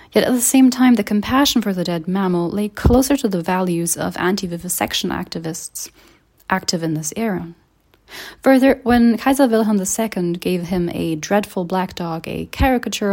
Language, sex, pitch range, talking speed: English, female, 175-225 Hz, 165 wpm